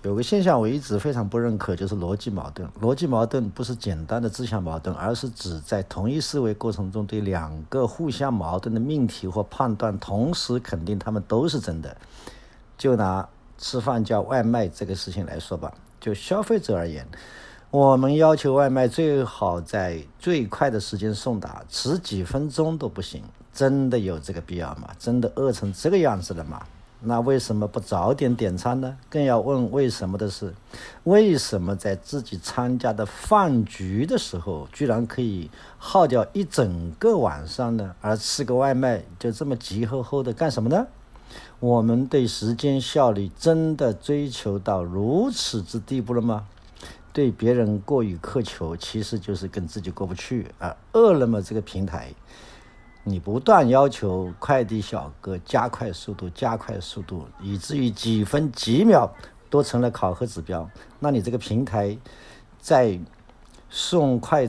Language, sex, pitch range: Chinese, male, 100-130 Hz